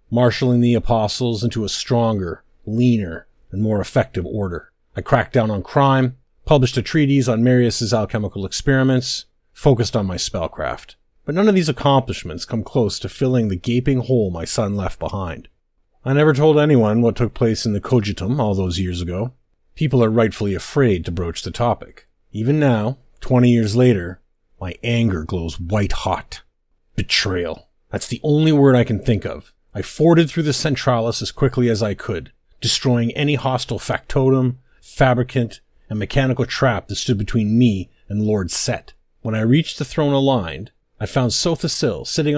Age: 30-49